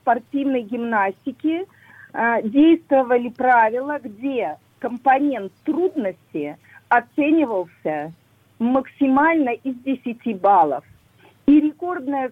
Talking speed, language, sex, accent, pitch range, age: 75 wpm, Russian, female, native, 200-275 Hz, 40-59